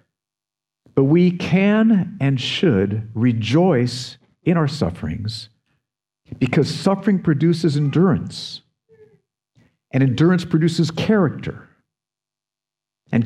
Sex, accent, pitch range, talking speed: male, American, 125-170 Hz, 80 wpm